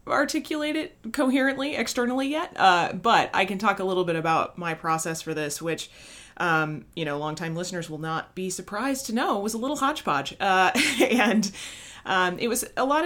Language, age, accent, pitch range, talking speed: English, 30-49, American, 160-220 Hz, 190 wpm